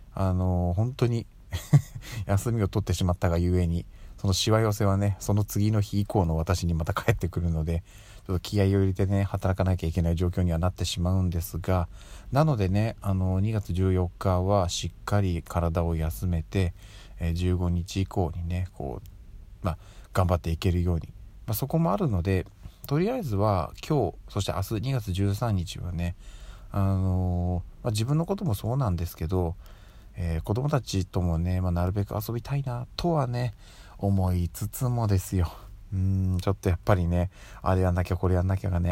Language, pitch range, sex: Japanese, 90-105 Hz, male